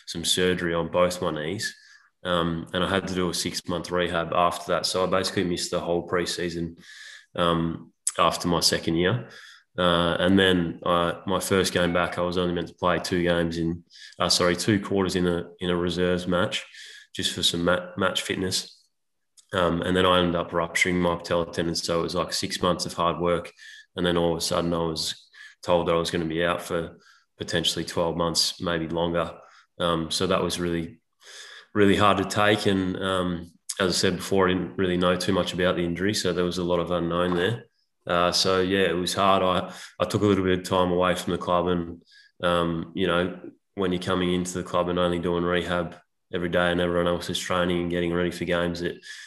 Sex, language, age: male, English, 20-39